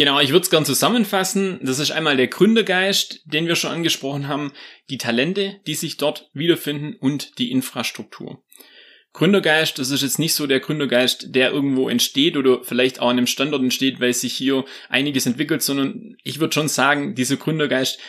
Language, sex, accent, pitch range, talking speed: German, male, German, 130-160 Hz, 185 wpm